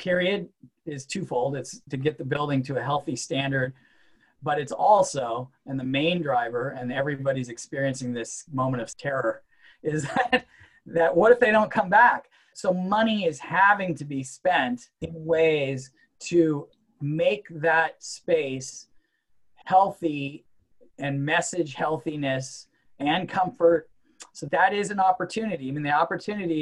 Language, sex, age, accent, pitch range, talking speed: English, male, 30-49, American, 140-170 Hz, 140 wpm